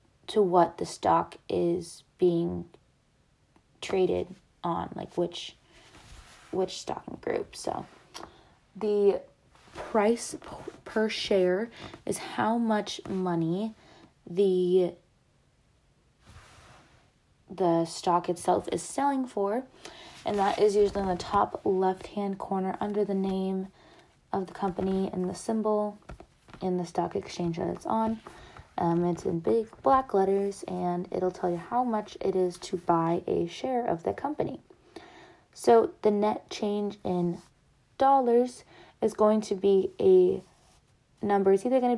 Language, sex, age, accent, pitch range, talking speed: English, female, 20-39, American, 180-215 Hz, 130 wpm